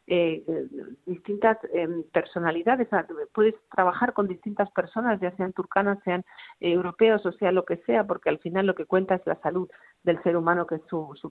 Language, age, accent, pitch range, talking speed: Spanish, 50-69, Spanish, 155-180 Hz, 195 wpm